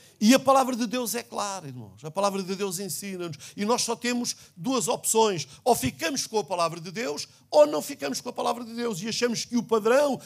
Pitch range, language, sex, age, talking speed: 160-235 Hz, Portuguese, male, 50-69, 230 wpm